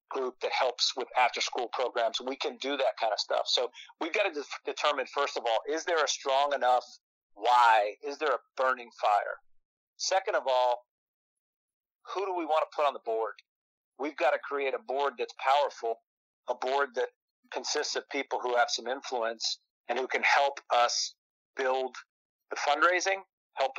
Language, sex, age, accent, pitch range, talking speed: English, male, 40-59, American, 125-170 Hz, 180 wpm